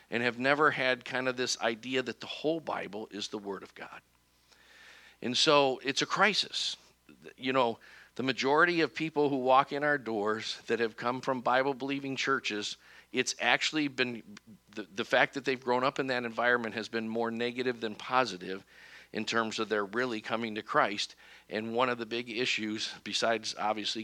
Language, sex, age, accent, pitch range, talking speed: English, male, 50-69, American, 110-135 Hz, 185 wpm